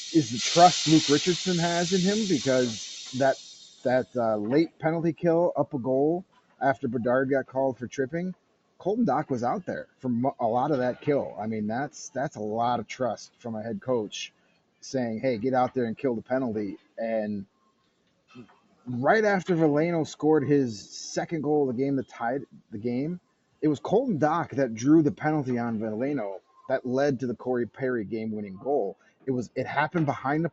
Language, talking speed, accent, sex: English, 185 wpm, American, male